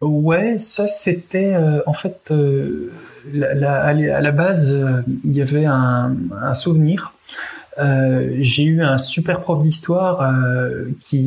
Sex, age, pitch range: male, 20-39, 130-150 Hz